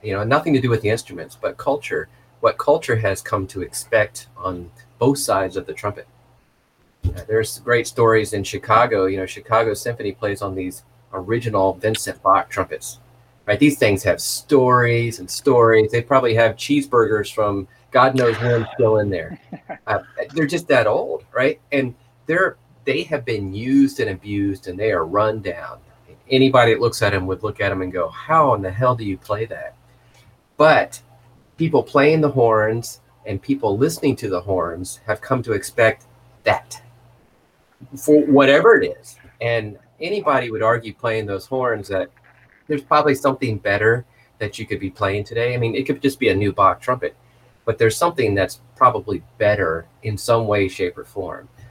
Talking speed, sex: 180 wpm, male